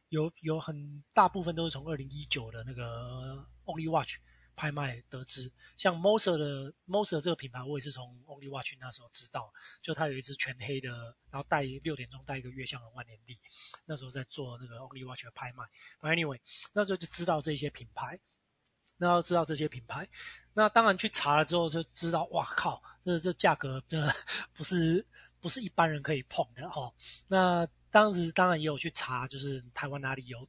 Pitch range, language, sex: 130-165 Hz, Chinese, male